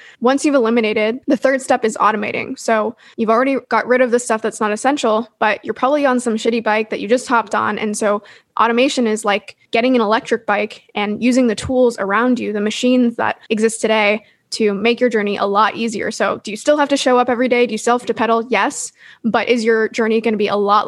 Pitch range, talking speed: 215-245 Hz, 240 wpm